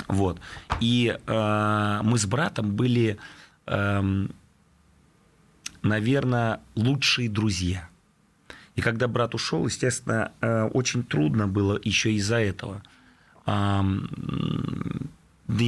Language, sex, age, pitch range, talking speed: Russian, male, 30-49, 95-125 Hz, 95 wpm